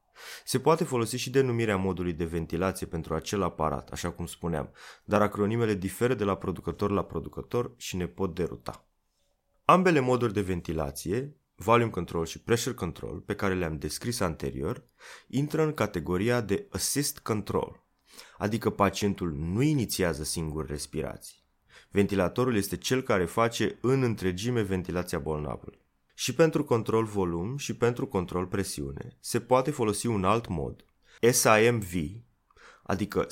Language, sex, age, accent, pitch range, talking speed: Romanian, male, 20-39, native, 90-120 Hz, 140 wpm